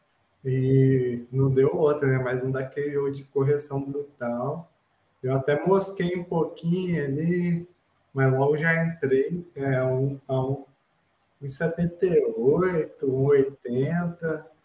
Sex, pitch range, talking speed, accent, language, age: male, 135-160 Hz, 115 wpm, Brazilian, Portuguese, 20-39